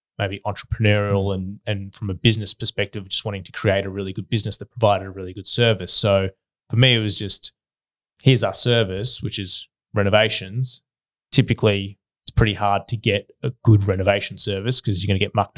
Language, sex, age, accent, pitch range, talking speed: English, male, 20-39, Australian, 95-110 Hz, 195 wpm